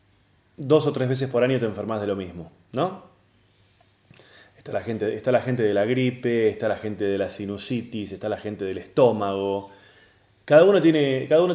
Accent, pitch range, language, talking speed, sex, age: Argentinian, 100-140 Hz, Spanish, 190 wpm, male, 20-39